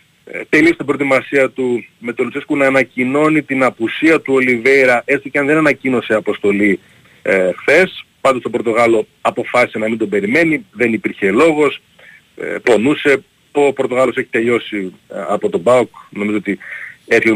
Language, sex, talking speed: Greek, male, 155 wpm